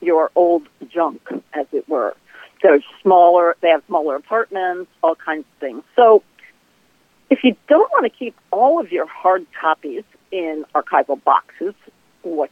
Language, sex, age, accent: English, female, 50-69, American